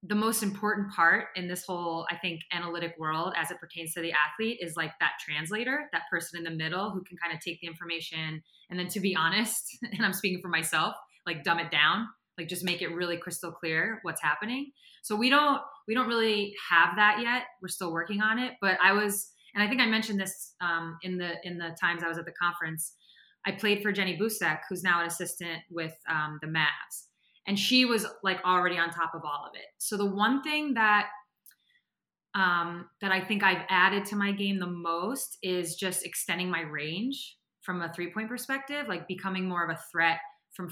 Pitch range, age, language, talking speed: 170-210 Hz, 20-39, English, 215 wpm